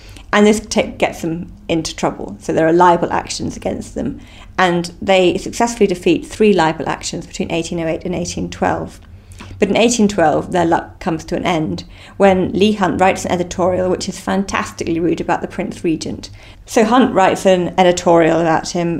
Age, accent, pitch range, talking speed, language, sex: 40-59, British, 160-190 Hz, 170 wpm, English, female